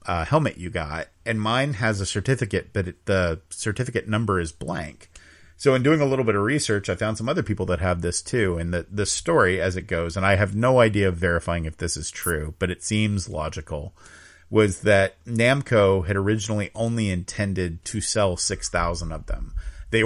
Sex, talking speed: male, 205 wpm